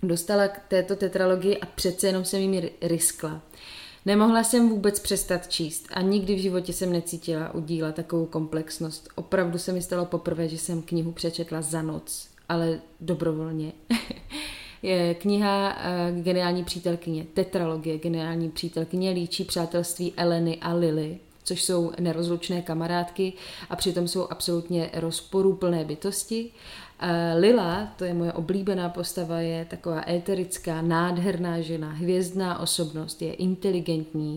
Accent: native